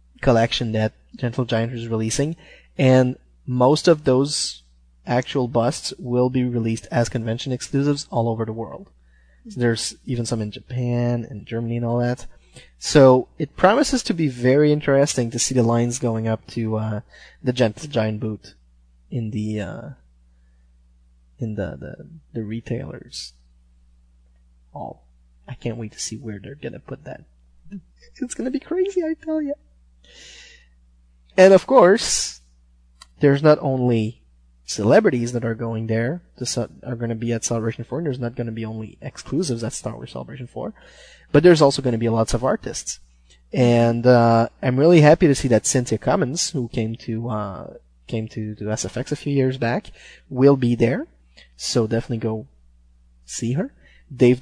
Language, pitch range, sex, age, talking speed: English, 85-130 Hz, male, 20-39, 165 wpm